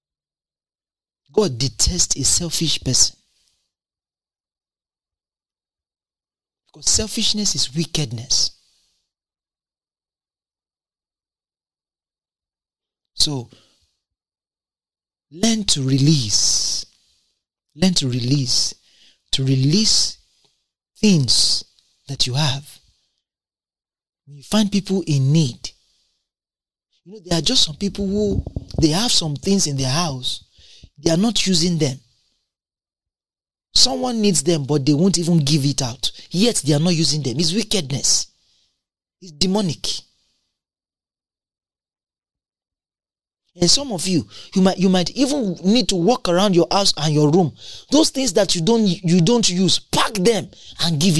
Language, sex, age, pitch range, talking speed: English, male, 40-59, 125-190 Hz, 115 wpm